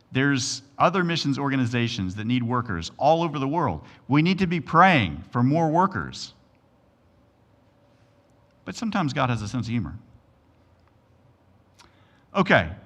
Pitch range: 110-145 Hz